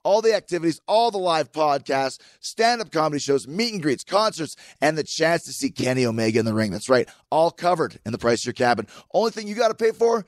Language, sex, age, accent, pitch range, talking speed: English, male, 30-49, American, 155-220 Hz, 230 wpm